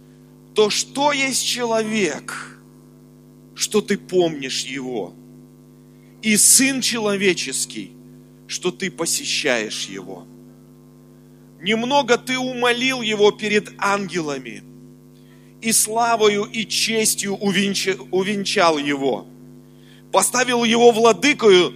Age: 40-59